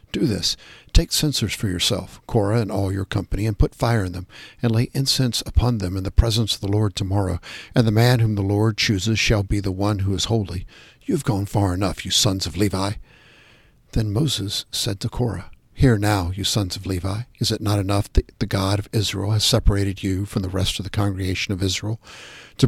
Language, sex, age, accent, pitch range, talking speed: English, male, 60-79, American, 100-120 Hz, 220 wpm